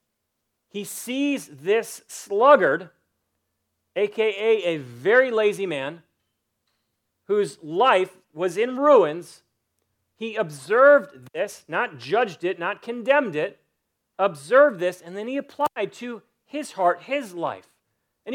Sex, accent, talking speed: male, American, 115 wpm